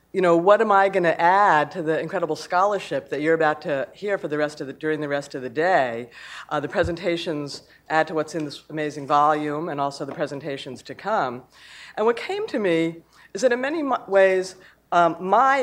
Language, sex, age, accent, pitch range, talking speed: English, female, 50-69, American, 150-185 Hz, 215 wpm